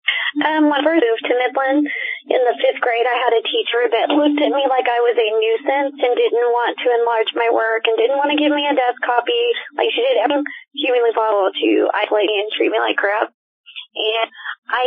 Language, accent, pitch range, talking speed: English, American, 240-335 Hz, 230 wpm